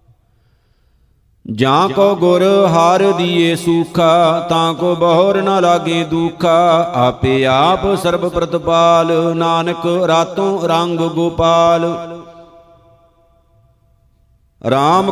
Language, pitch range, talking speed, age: Punjabi, 165-180 Hz, 85 wpm, 50-69